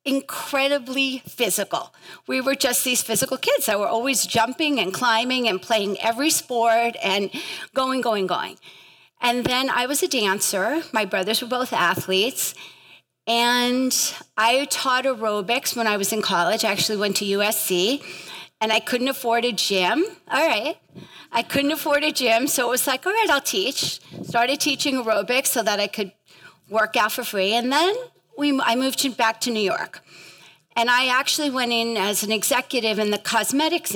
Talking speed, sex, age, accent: 175 wpm, female, 40-59, American